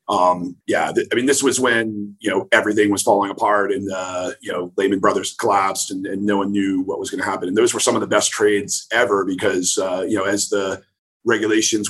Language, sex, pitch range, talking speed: English, male, 100-135 Hz, 230 wpm